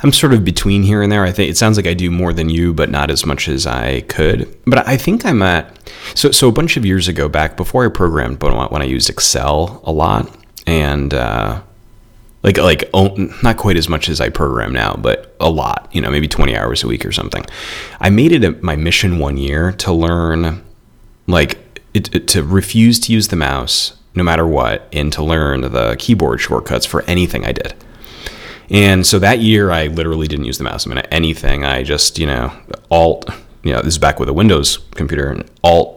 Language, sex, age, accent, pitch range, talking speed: English, male, 30-49, American, 75-100 Hz, 215 wpm